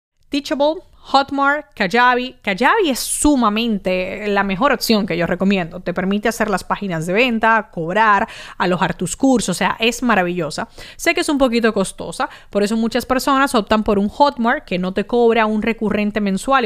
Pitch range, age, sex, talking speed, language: 185-240 Hz, 30-49, female, 175 wpm, Spanish